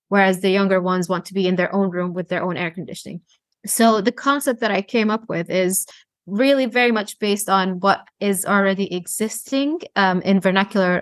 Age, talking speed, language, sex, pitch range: 20-39, 200 wpm, English, female, 190-230 Hz